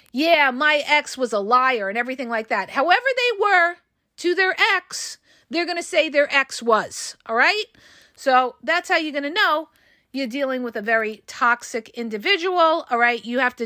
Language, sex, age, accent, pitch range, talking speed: English, female, 40-59, American, 235-305 Hz, 195 wpm